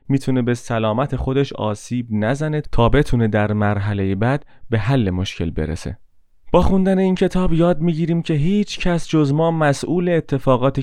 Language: Persian